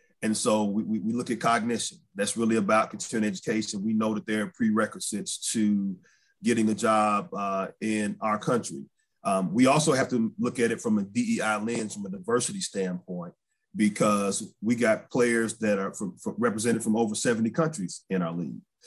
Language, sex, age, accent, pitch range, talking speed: English, male, 30-49, American, 110-160 Hz, 185 wpm